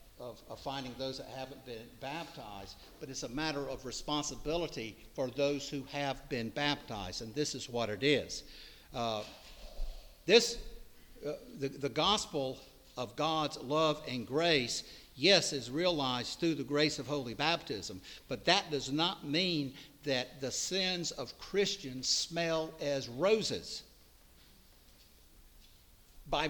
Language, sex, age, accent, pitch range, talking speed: English, male, 60-79, American, 125-165 Hz, 135 wpm